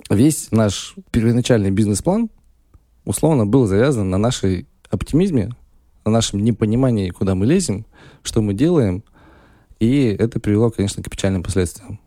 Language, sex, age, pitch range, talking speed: Russian, male, 20-39, 95-120 Hz, 130 wpm